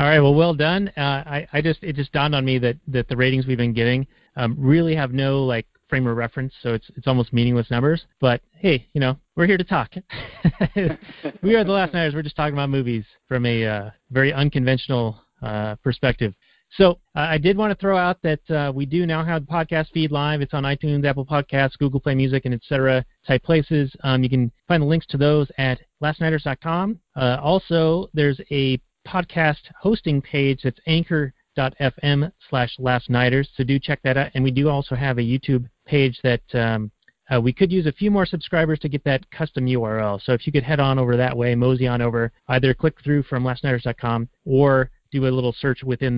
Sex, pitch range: male, 125-155 Hz